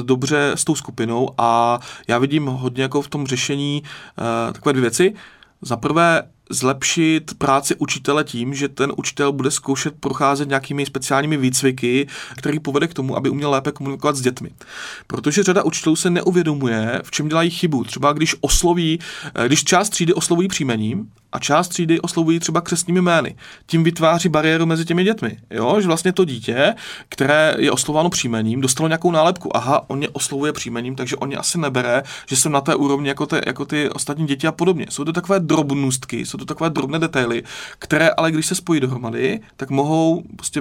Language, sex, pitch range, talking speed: Czech, male, 130-160 Hz, 180 wpm